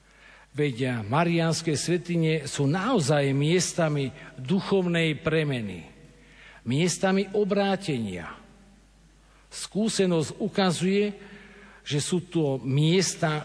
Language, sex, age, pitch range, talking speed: Slovak, male, 50-69, 145-180 Hz, 65 wpm